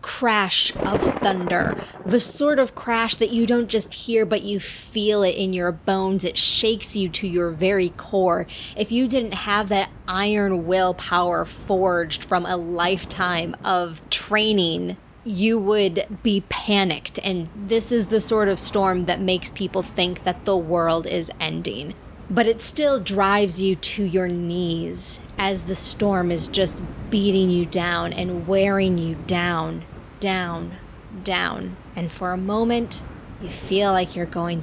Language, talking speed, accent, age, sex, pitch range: English, 155 wpm, American, 20-39, female, 180-225 Hz